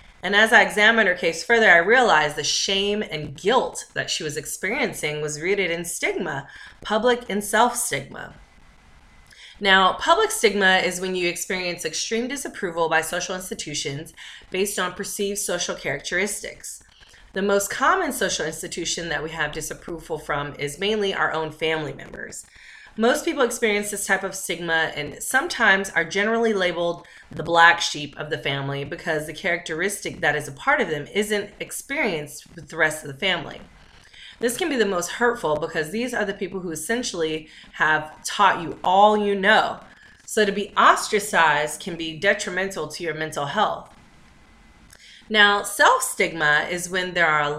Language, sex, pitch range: English, female, 155-205 Hz